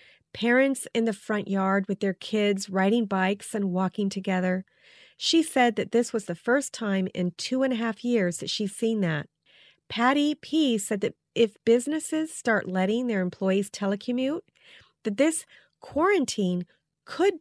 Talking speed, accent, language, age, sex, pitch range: 160 wpm, American, English, 40-59, female, 185-245 Hz